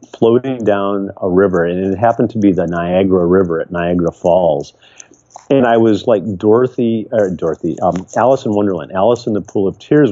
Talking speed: 190 wpm